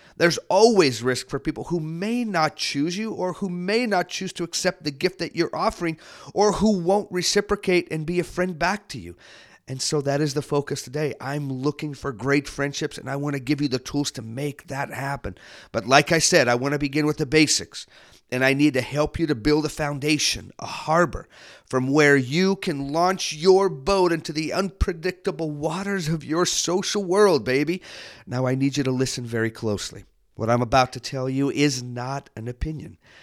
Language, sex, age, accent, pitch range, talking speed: English, male, 40-59, American, 130-165 Hz, 205 wpm